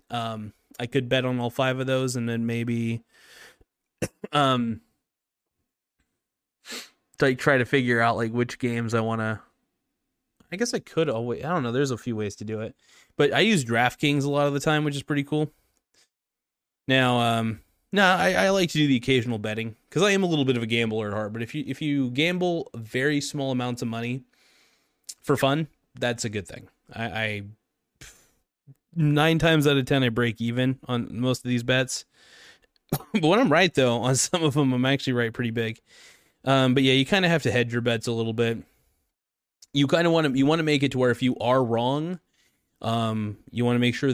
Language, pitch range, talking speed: English, 115-145 Hz, 210 wpm